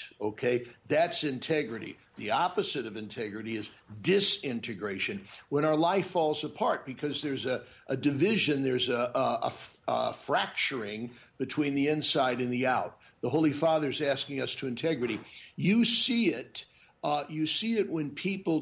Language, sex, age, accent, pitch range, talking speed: English, male, 60-79, American, 135-175 Hz, 150 wpm